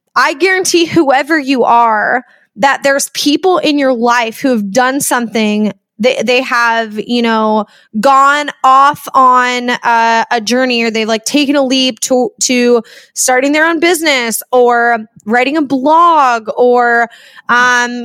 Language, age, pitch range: English, 20-39, 235-300 Hz